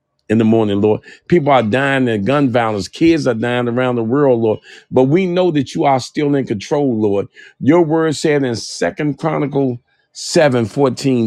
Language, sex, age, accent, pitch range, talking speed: English, male, 50-69, American, 120-155 Hz, 185 wpm